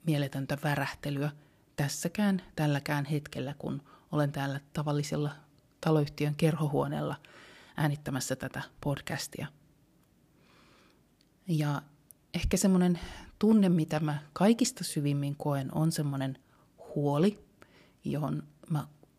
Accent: native